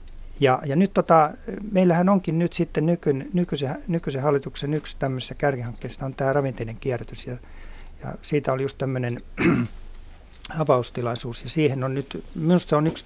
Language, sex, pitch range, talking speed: Finnish, male, 125-160 Hz, 150 wpm